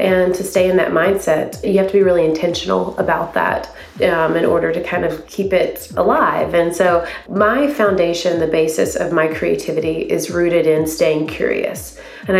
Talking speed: 185 wpm